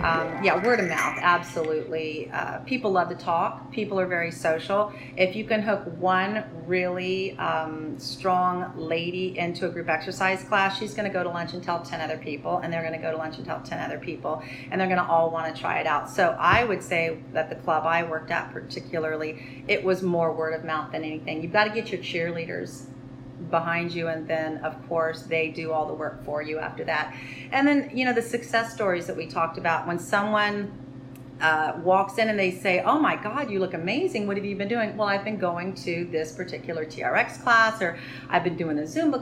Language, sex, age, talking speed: English, female, 40-59, 225 wpm